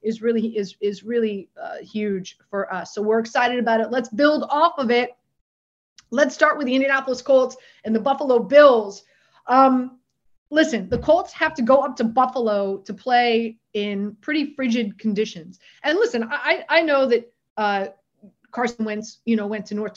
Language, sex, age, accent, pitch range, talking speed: English, female, 30-49, American, 220-260 Hz, 175 wpm